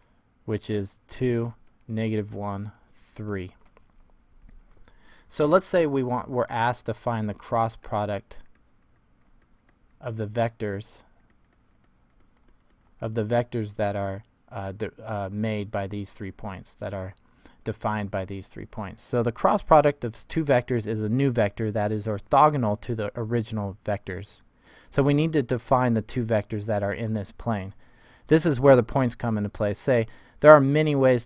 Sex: male